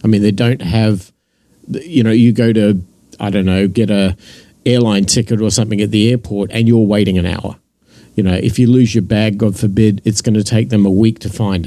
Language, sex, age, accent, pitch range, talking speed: English, male, 50-69, Australian, 110-130 Hz, 230 wpm